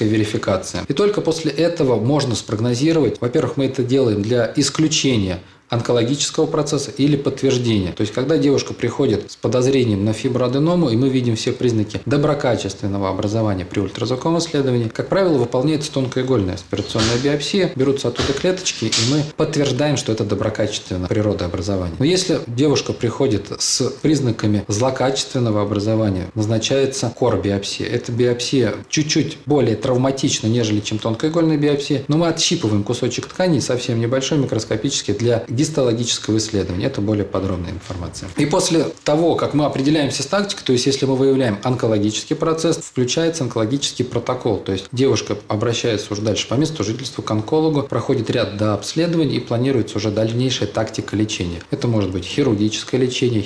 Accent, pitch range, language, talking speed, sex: native, 110-145 Hz, Russian, 145 wpm, male